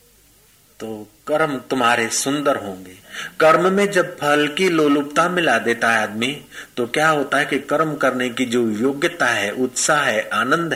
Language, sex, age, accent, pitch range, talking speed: Hindi, male, 50-69, native, 135-180 Hz, 155 wpm